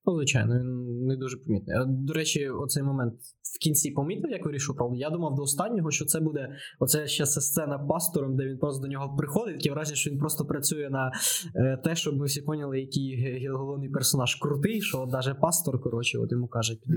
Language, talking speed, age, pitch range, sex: Ukrainian, 200 wpm, 20-39, 125-150 Hz, male